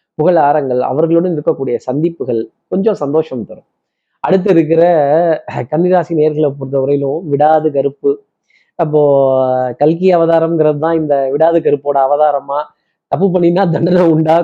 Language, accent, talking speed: Tamil, native, 110 wpm